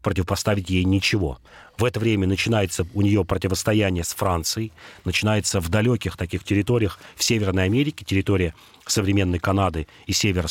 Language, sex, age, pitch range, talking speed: Russian, male, 40-59, 95-115 Hz, 145 wpm